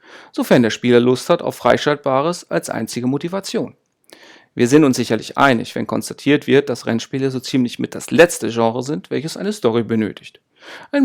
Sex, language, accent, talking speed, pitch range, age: male, German, German, 175 wpm, 120-185 Hz, 40-59